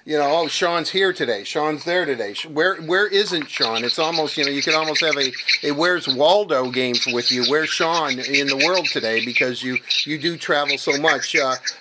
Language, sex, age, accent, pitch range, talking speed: English, male, 50-69, American, 130-160 Hz, 220 wpm